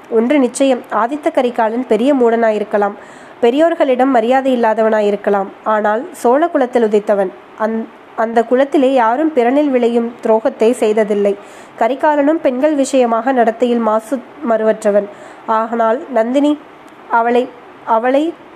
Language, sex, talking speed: Tamil, female, 95 wpm